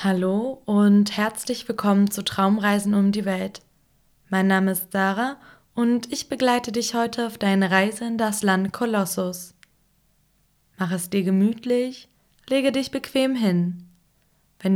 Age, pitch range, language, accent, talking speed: 20-39, 175-220 Hz, German, German, 140 wpm